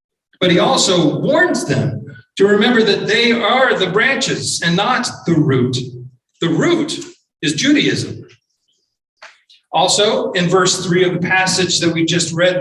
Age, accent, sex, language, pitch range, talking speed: 40-59, American, male, English, 165-225 Hz, 150 wpm